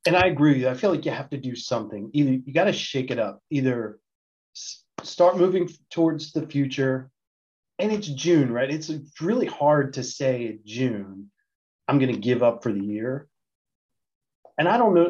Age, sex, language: 30-49, male, English